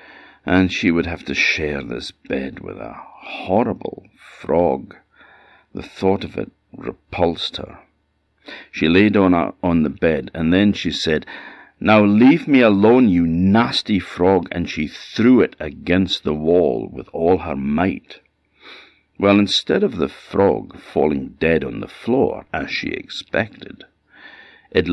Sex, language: male, English